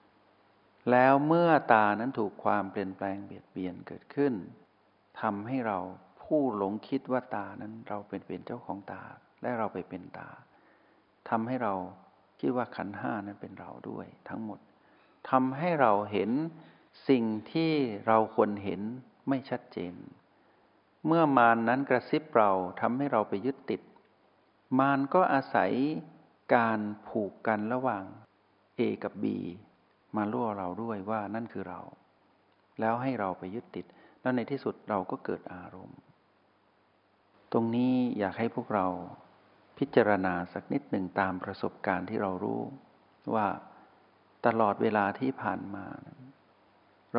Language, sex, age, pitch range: Thai, male, 60-79, 100-130 Hz